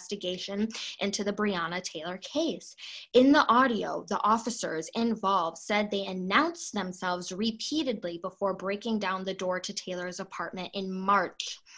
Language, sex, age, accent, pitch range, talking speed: English, female, 20-39, American, 190-230 Hz, 140 wpm